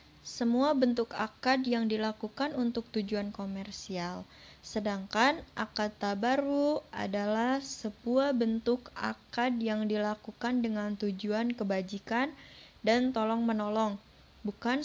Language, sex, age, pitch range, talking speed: Indonesian, female, 20-39, 210-240 Hz, 95 wpm